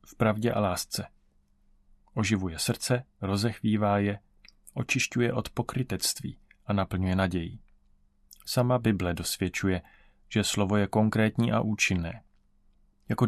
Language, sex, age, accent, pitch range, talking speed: Czech, male, 30-49, native, 100-120 Hz, 110 wpm